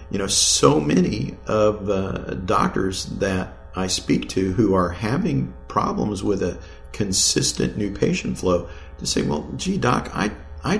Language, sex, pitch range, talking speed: English, male, 80-105 Hz, 155 wpm